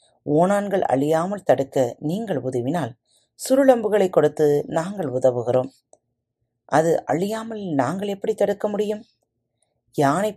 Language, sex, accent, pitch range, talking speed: Tamil, female, native, 120-175 Hz, 95 wpm